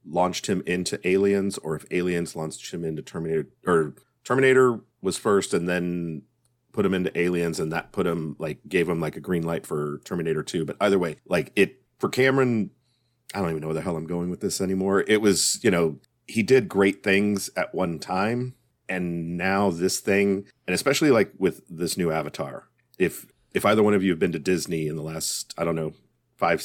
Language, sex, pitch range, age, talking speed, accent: English, male, 80-100 Hz, 40-59, 210 wpm, American